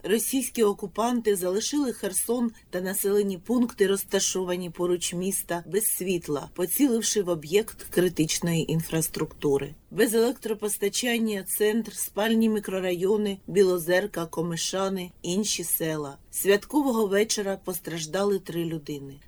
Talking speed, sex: 95 wpm, female